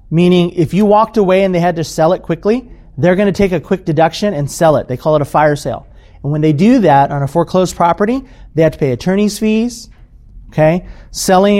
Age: 40-59